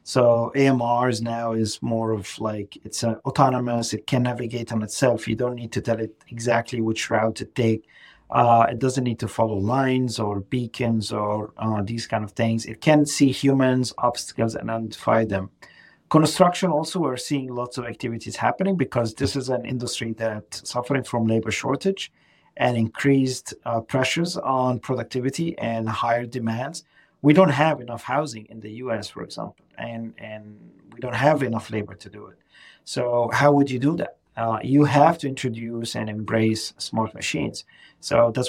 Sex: male